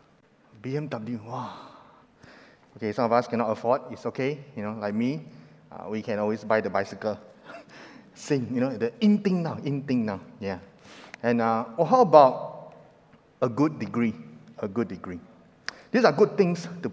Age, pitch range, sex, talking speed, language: 30-49, 110-150 Hz, male, 165 wpm, English